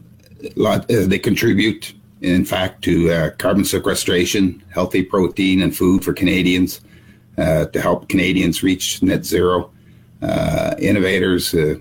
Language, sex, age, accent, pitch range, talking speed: English, male, 50-69, American, 85-105 Hz, 125 wpm